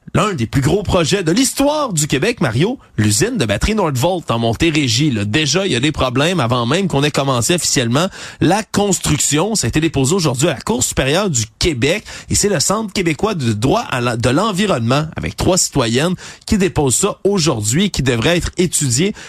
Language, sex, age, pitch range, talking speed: French, male, 30-49, 130-180 Hz, 200 wpm